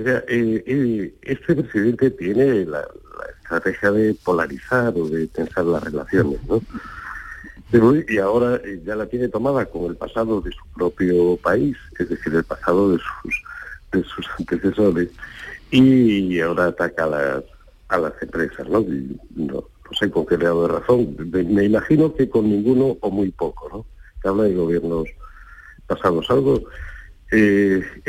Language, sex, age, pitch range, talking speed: Spanish, male, 50-69, 85-125 Hz, 150 wpm